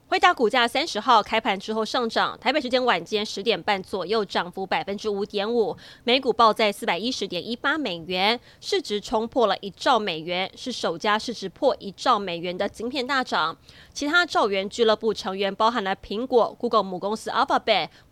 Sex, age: female, 20-39